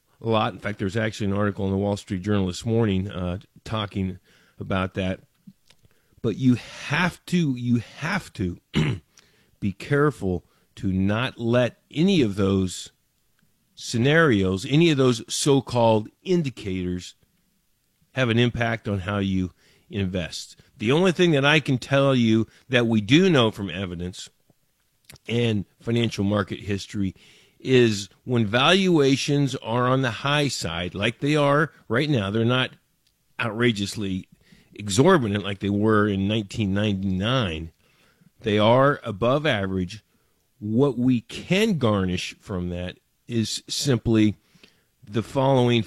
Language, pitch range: English, 100-135 Hz